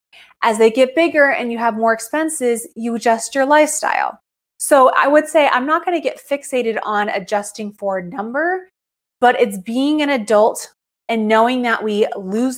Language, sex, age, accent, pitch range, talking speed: English, female, 20-39, American, 200-250 Hz, 180 wpm